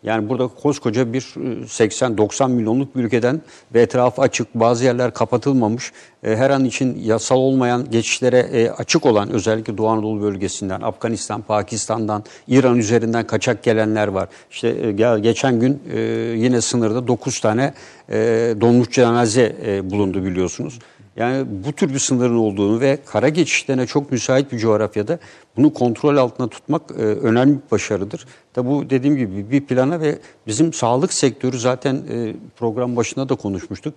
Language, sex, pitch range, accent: Turkish, male, 110-130 Hz, native